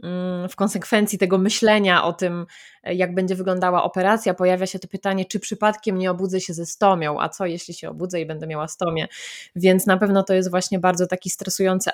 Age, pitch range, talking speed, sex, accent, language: 20-39, 180-215 Hz, 195 wpm, female, native, Polish